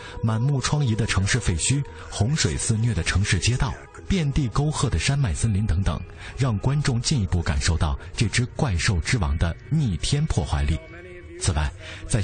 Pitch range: 90-125 Hz